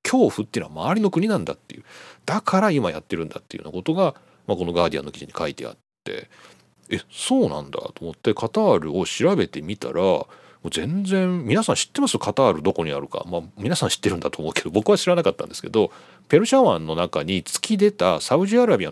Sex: male